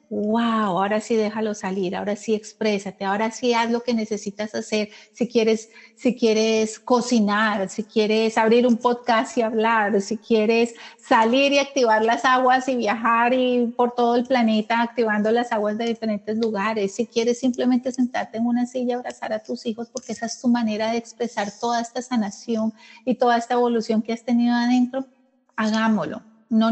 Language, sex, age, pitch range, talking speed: Spanish, female, 40-59, 220-255 Hz, 175 wpm